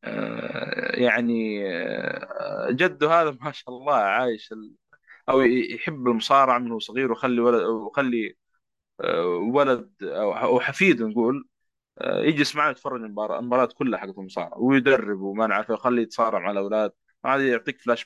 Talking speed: 125 wpm